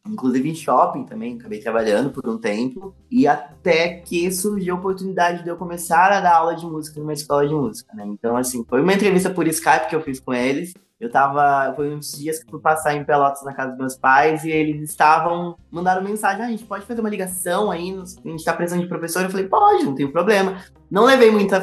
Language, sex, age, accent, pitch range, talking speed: Portuguese, male, 20-39, Brazilian, 135-190 Hz, 235 wpm